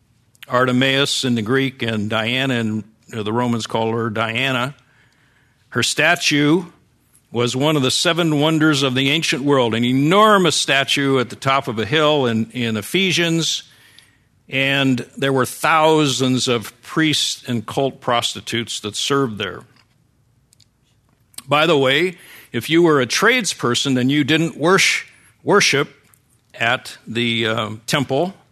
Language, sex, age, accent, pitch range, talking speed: English, male, 60-79, American, 115-140 Hz, 135 wpm